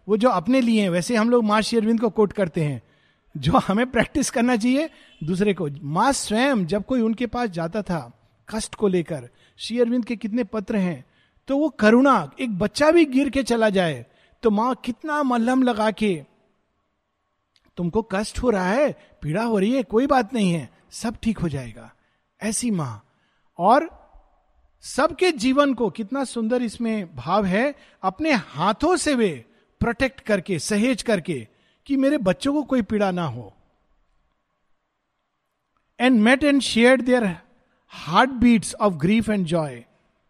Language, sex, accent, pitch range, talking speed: Hindi, male, native, 175-245 Hz, 160 wpm